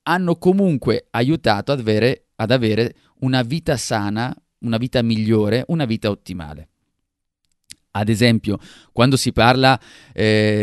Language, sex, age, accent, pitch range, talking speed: Italian, male, 30-49, native, 105-135 Hz, 125 wpm